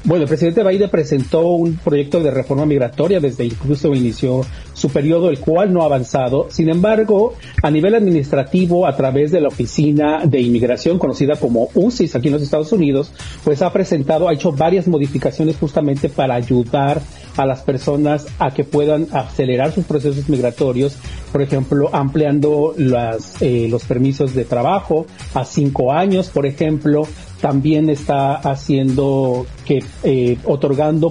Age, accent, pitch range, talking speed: 40-59, Mexican, 135-160 Hz, 155 wpm